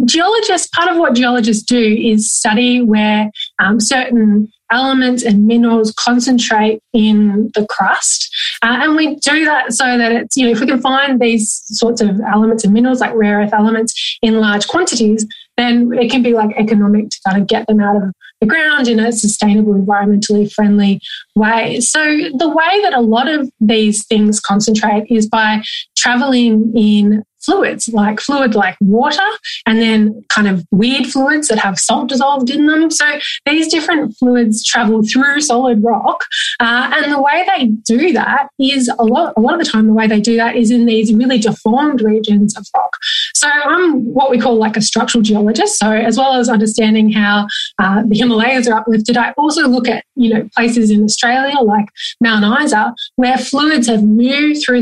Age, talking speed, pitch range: 10-29, 185 wpm, 215-265 Hz